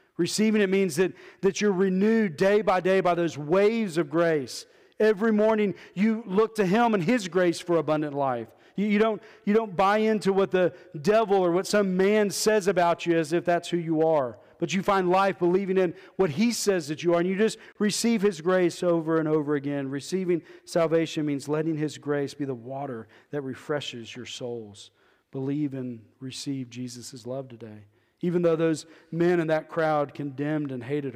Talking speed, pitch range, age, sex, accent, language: 195 wpm, 130-175 Hz, 40-59, male, American, English